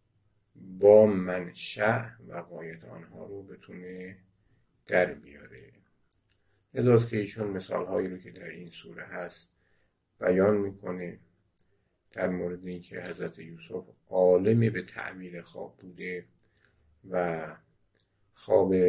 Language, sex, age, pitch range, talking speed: Persian, male, 50-69, 90-110 Hz, 110 wpm